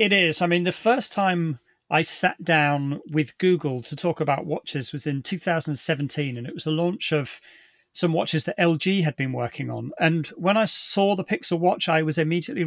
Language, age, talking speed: English, 30-49, 205 wpm